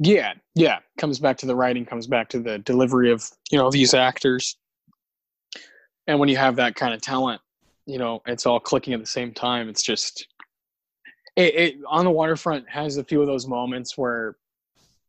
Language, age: English, 20-39